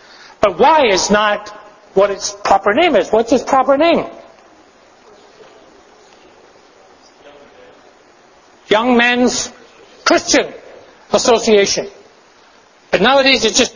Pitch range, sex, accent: 215-275 Hz, male, American